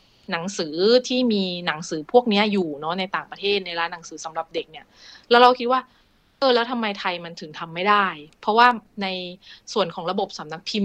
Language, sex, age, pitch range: Thai, female, 20-39, 175-225 Hz